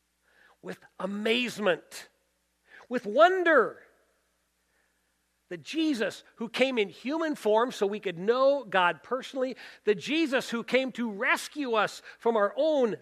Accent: American